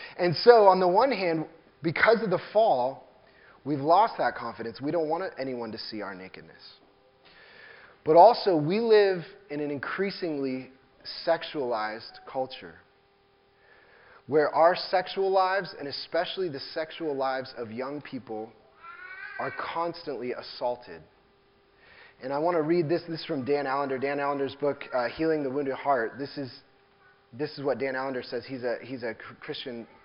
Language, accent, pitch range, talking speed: English, American, 140-185 Hz, 160 wpm